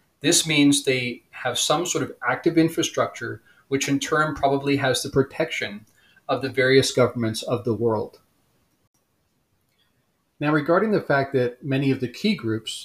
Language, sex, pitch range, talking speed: English, male, 120-150 Hz, 155 wpm